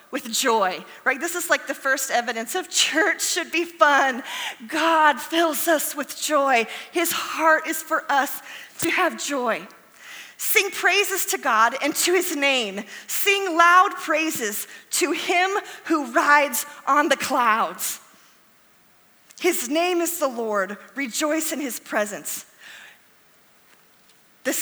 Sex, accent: female, American